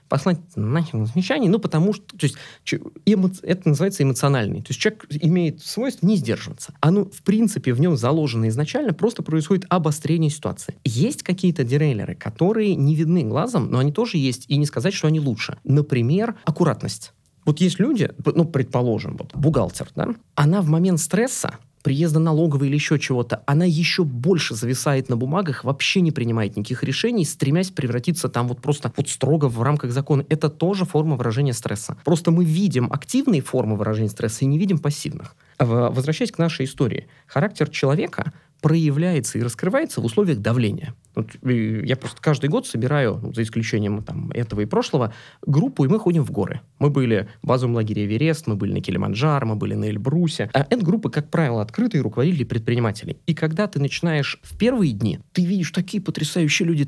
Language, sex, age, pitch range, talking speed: Russian, male, 20-39, 130-175 Hz, 180 wpm